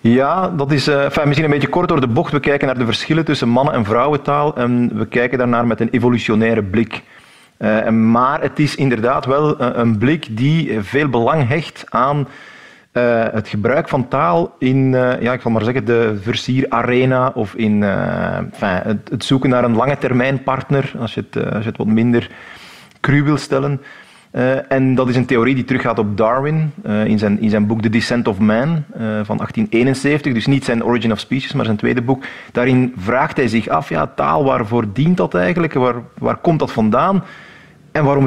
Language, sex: Dutch, male